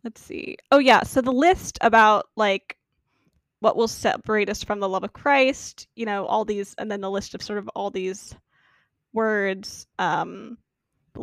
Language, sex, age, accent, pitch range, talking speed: English, female, 10-29, American, 215-260 Hz, 180 wpm